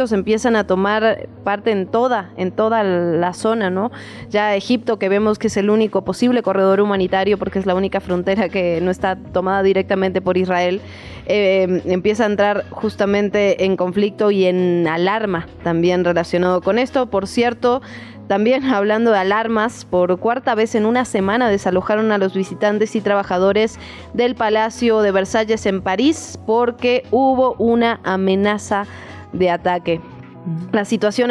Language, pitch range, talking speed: Spanish, 190-235 Hz, 155 wpm